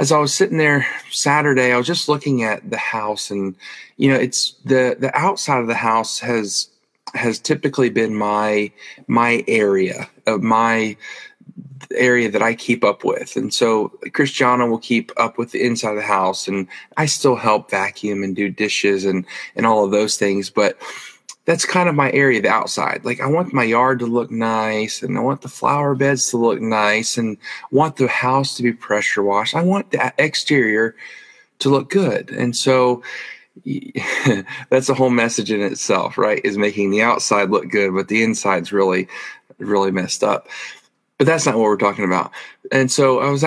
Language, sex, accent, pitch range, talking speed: English, male, American, 105-135 Hz, 190 wpm